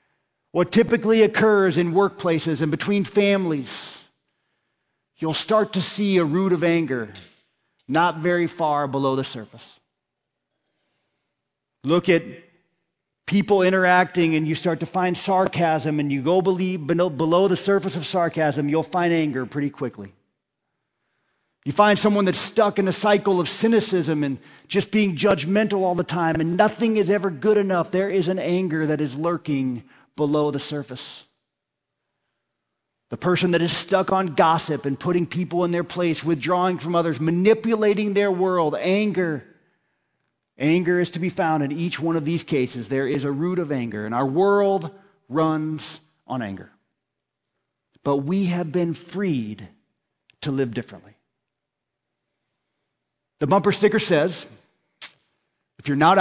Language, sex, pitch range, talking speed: English, male, 145-190 Hz, 145 wpm